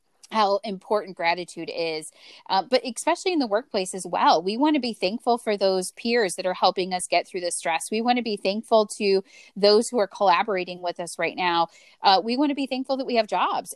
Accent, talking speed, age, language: American, 225 wpm, 20-39, English